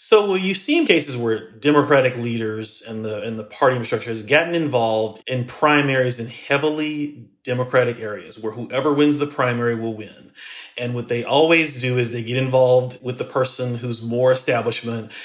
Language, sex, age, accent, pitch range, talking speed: English, male, 30-49, American, 120-145 Hz, 185 wpm